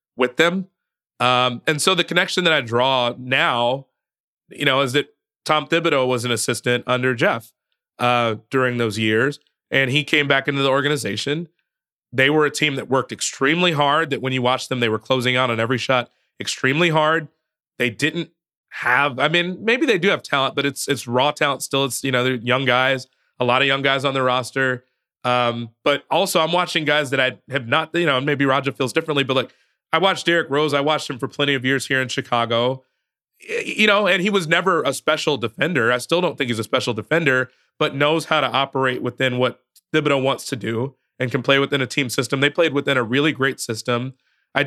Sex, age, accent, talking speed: male, 30-49, American, 215 wpm